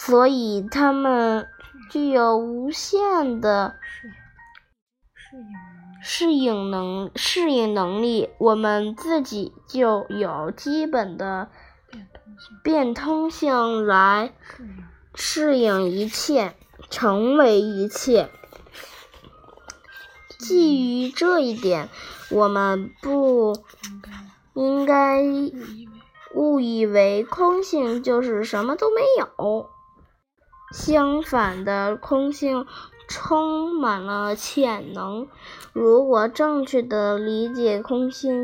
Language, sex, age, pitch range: Chinese, female, 10-29, 210-285 Hz